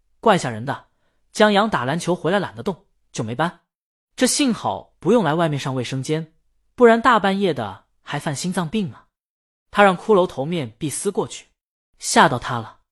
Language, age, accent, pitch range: Chinese, 20-39, native, 140-195 Hz